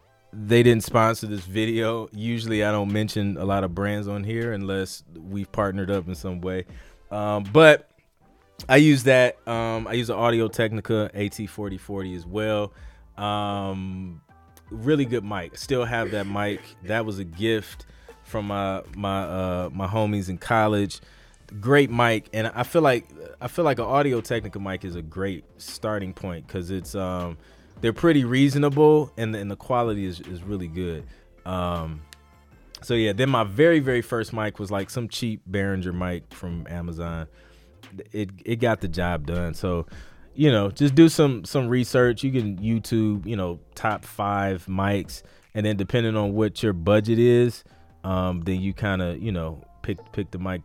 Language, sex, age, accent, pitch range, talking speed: English, male, 20-39, American, 90-115 Hz, 175 wpm